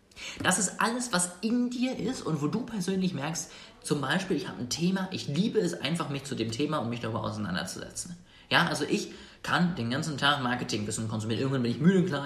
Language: German